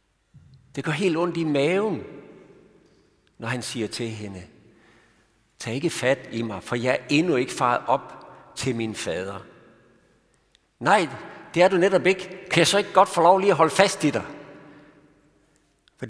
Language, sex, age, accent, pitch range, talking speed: Danish, male, 60-79, native, 120-170 Hz, 170 wpm